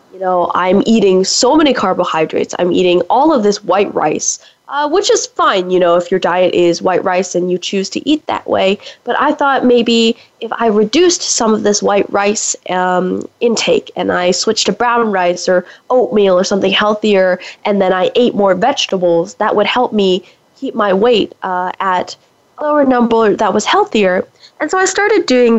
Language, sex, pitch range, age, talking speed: English, female, 190-245 Hz, 10-29, 195 wpm